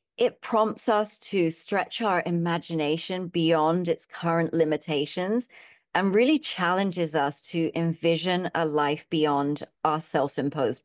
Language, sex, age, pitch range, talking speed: English, female, 40-59, 160-200 Hz, 120 wpm